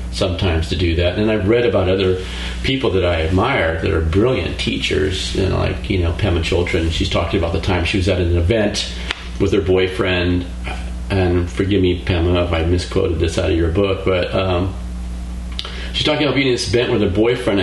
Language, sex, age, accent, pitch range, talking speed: English, male, 40-59, American, 85-100 Hz, 210 wpm